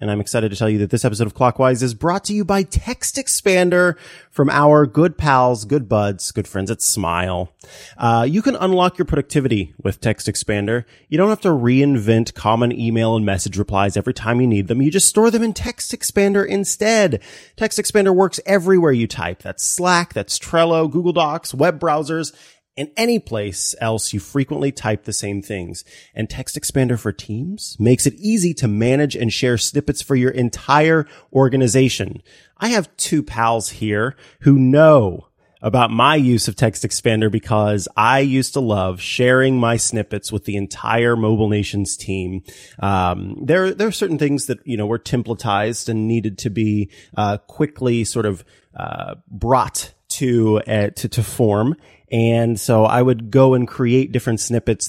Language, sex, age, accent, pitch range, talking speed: English, male, 30-49, American, 105-150 Hz, 180 wpm